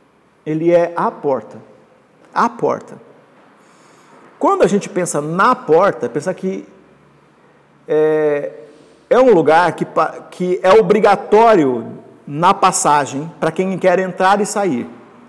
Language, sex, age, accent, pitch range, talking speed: Portuguese, male, 50-69, Brazilian, 180-255 Hz, 120 wpm